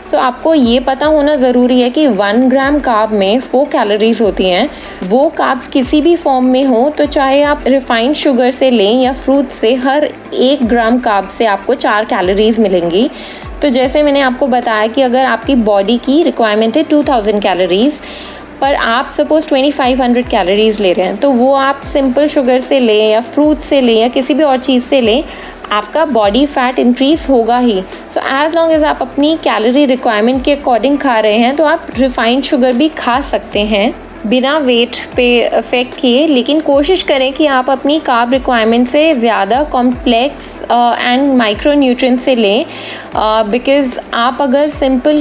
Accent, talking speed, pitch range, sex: native, 180 wpm, 235-285 Hz, female